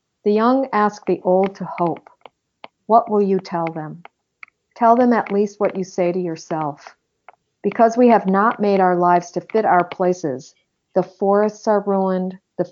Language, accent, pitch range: English, American, 175-200 Hz